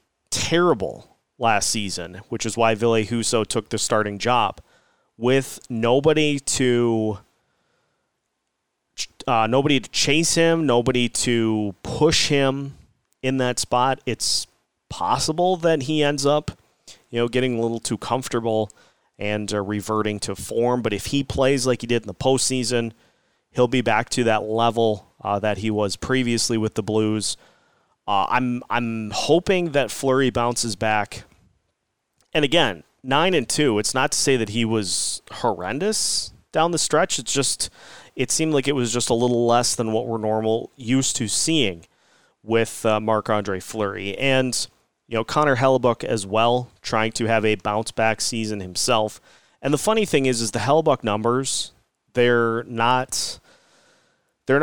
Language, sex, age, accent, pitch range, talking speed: English, male, 30-49, American, 110-130 Hz, 155 wpm